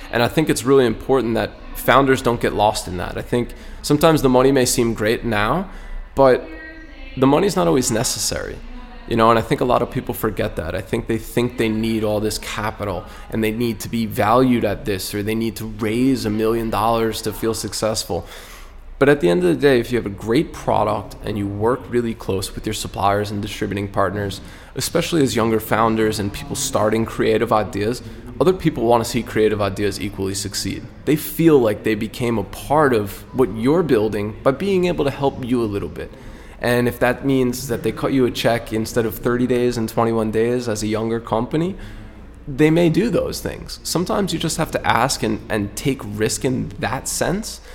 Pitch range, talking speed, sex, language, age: 105-130 Hz, 210 wpm, male, English, 20-39